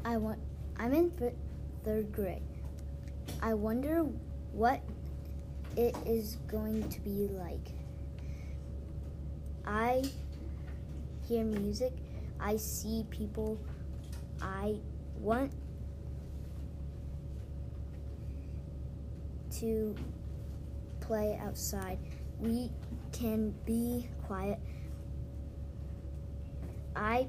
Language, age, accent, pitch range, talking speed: English, 10-29, American, 70-85 Hz, 70 wpm